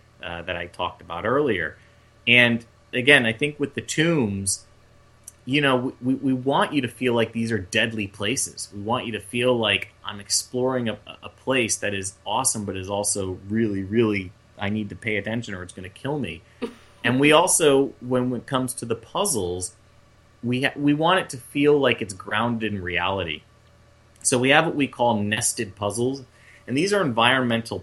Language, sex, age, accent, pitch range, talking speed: English, male, 30-49, American, 100-125 Hz, 190 wpm